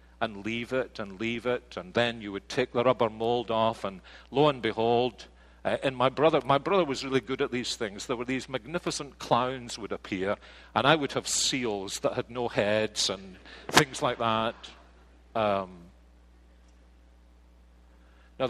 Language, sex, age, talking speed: English, male, 50-69, 170 wpm